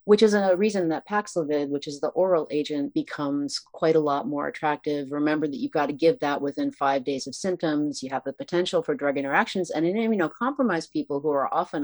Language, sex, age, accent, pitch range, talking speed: English, female, 40-59, American, 140-165 Hz, 220 wpm